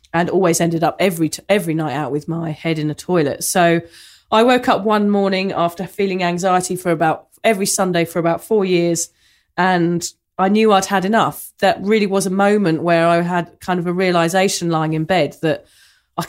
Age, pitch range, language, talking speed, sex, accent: 30-49, 170-205 Hz, English, 205 wpm, female, British